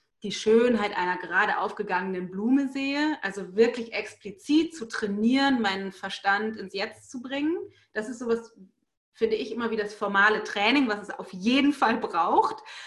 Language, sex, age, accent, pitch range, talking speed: German, female, 30-49, German, 195-245 Hz, 160 wpm